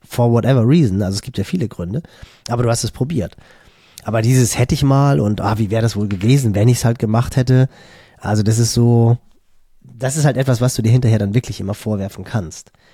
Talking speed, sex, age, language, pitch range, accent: 225 wpm, male, 30-49, German, 105-130 Hz, German